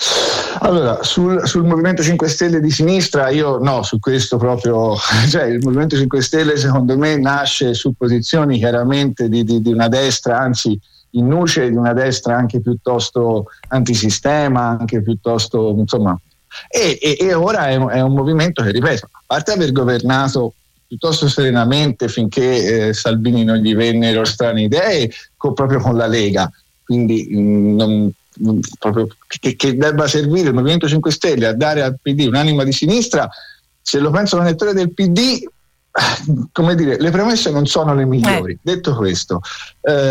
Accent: native